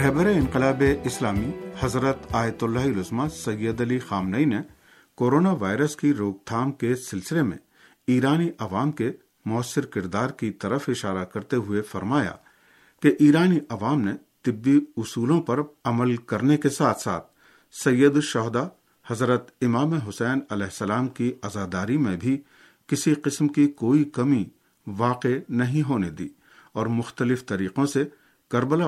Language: Urdu